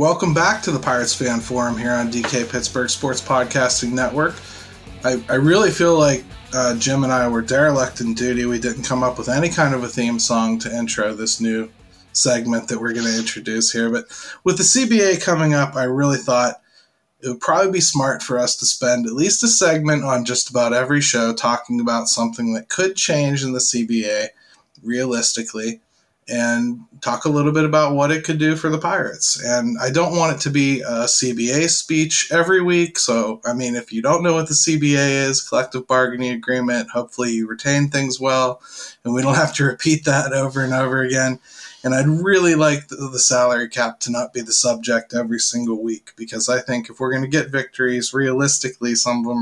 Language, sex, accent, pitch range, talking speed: English, male, American, 120-145 Hz, 205 wpm